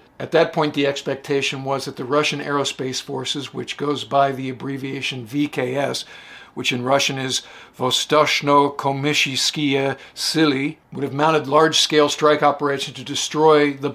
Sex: male